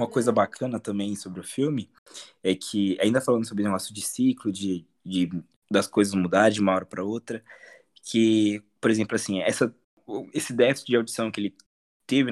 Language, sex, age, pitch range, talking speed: Portuguese, male, 20-39, 110-155 Hz, 185 wpm